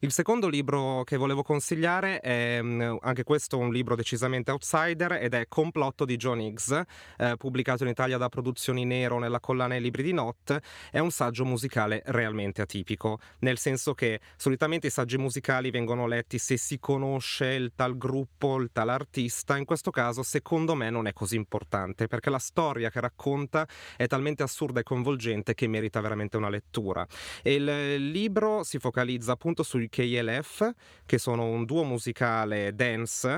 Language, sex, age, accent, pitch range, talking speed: Italian, male, 30-49, native, 120-145 Hz, 165 wpm